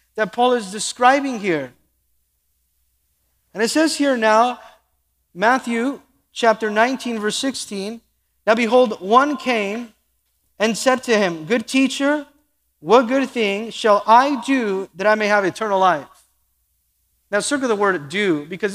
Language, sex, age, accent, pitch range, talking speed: English, male, 40-59, American, 165-240 Hz, 140 wpm